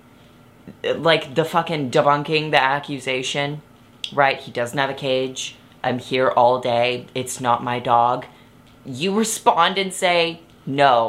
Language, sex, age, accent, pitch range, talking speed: English, female, 20-39, American, 125-155 Hz, 135 wpm